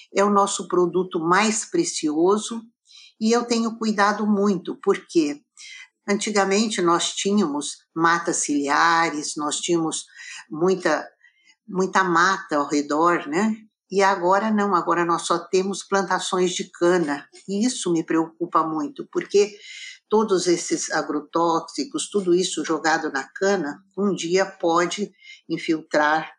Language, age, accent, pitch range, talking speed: Portuguese, 50-69, Brazilian, 170-220 Hz, 120 wpm